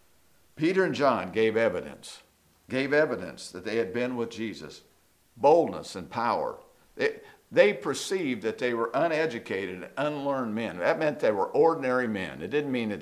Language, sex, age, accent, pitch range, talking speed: English, male, 50-69, American, 115-150 Hz, 160 wpm